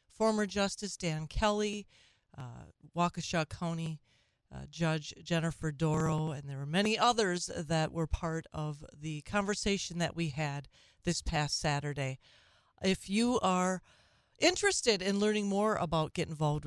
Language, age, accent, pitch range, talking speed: English, 40-59, American, 160-220 Hz, 135 wpm